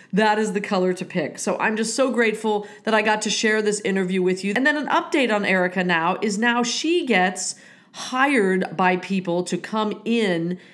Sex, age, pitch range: female, 40-59, 180-230 Hz